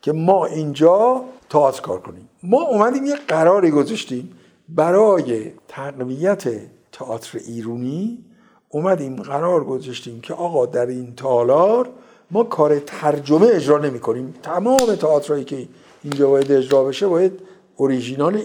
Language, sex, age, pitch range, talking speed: Persian, male, 60-79, 130-180 Hz, 120 wpm